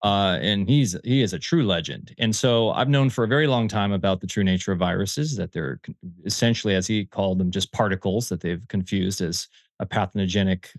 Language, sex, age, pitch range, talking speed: English, male, 30-49, 105-135 Hz, 210 wpm